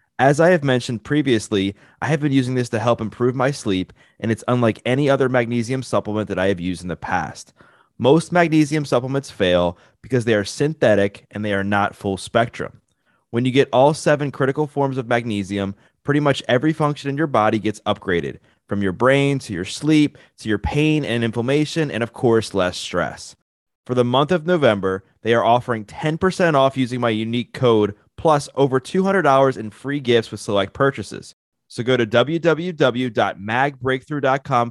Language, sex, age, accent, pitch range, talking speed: English, male, 20-39, American, 110-140 Hz, 180 wpm